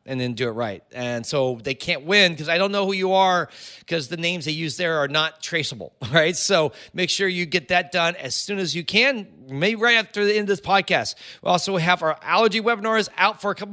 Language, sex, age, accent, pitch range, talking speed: English, male, 30-49, American, 145-205 Hz, 250 wpm